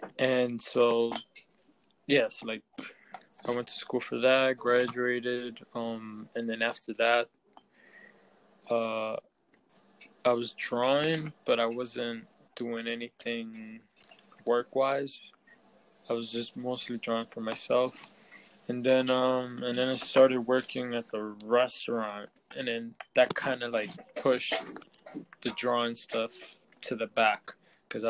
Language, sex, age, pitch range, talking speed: English, male, 20-39, 115-130 Hz, 125 wpm